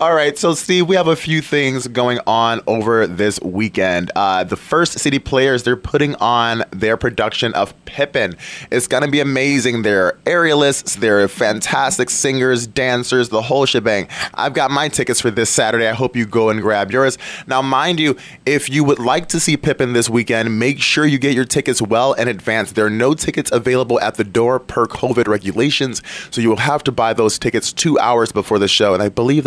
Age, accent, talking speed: 20-39, American, 205 wpm